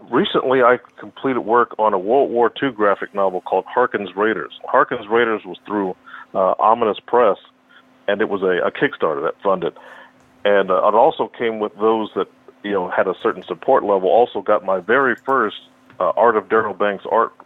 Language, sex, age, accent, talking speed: English, male, 40-59, American, 190 wpm